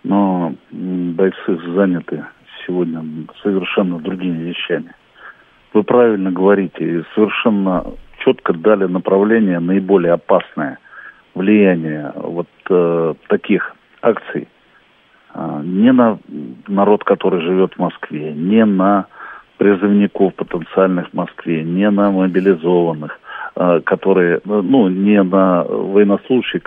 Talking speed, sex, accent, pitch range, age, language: 100 wpm, male, native, 85-100 Hz, 50-69, Russian